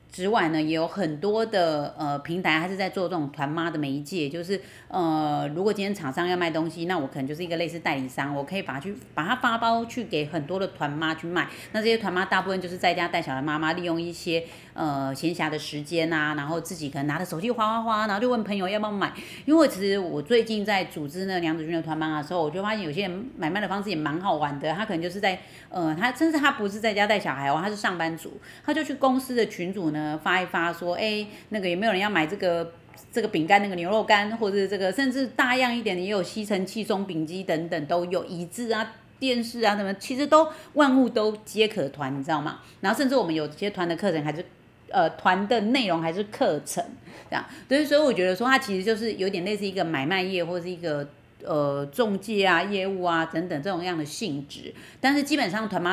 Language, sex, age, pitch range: Chinese, female, 30-49, 155-205 Hz